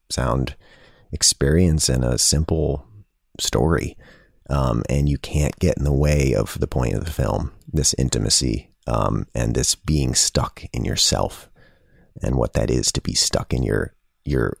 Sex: male